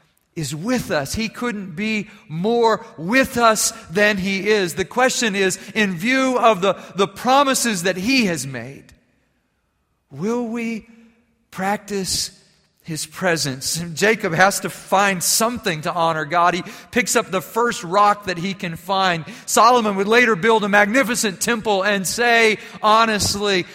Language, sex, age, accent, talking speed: English, male, 40-59, American, 145 wpm